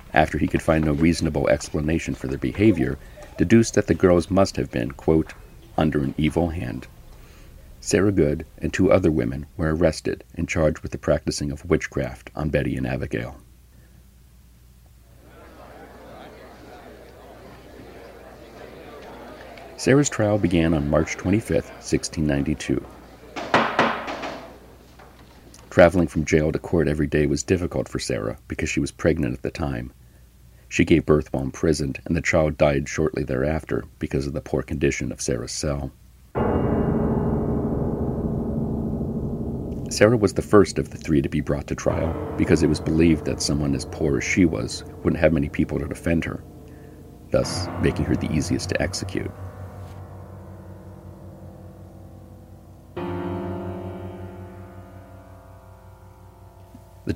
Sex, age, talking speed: male, 50-69, 130 wpm